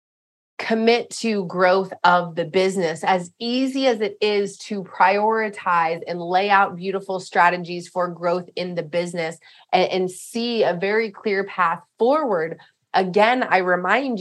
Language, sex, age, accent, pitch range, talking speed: English, female, 20-39, American, 175-210 Hz, 145 wpm